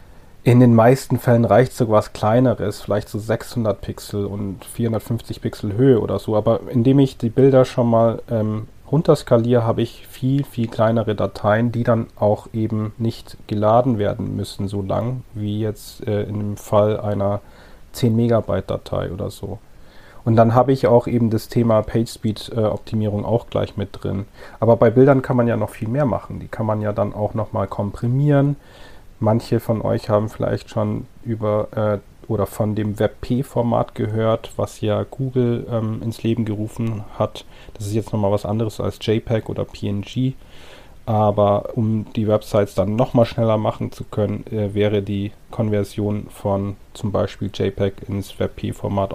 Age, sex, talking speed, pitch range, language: 40-59, male, 170 wpm, 105-120 Hz, German